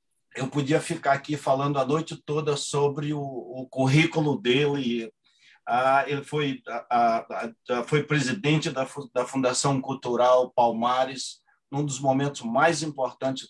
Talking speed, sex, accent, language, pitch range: 130 wpm, male, Brazilian, English, 115-140 Hz